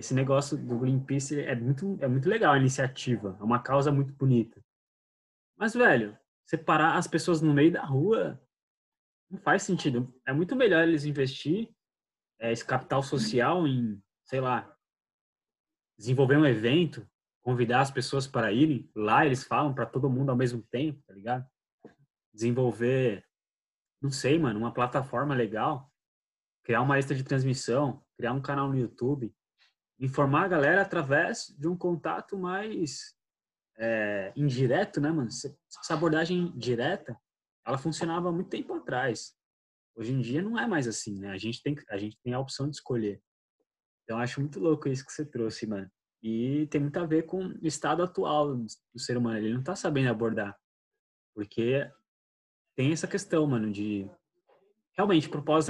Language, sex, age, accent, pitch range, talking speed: Portuguese, male, 20-39, Brazilian, 120-155 Hz, 160 wpm